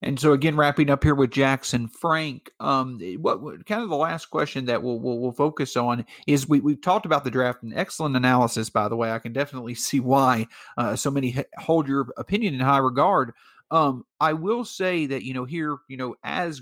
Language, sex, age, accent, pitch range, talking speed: English, male, 40-59, American, 125-150 Hz, 225 wpm